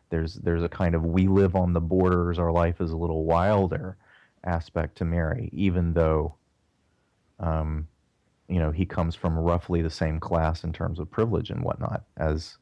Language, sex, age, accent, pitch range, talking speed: English, male, 30-49, American, 80-95 Hz, 180 wpm